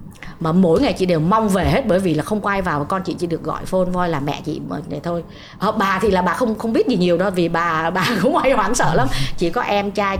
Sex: female